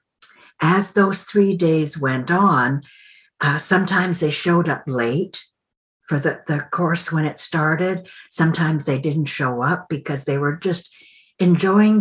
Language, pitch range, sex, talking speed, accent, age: English, 140-175 Hz, female, 145 wpm, American, 60-79